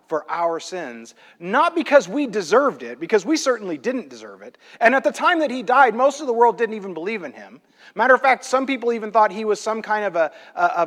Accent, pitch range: American, 200-275 Hz